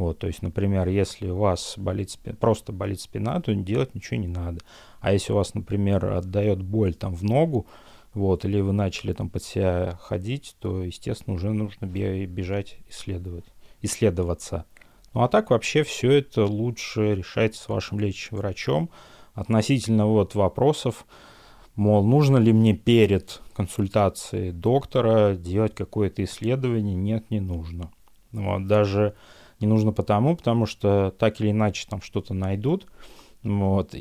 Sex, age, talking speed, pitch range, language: male, 30-49, 150 wpm, 95-115 Hz, Russian